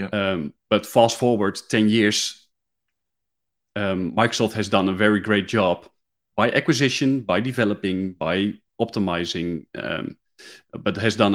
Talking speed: 125 wpm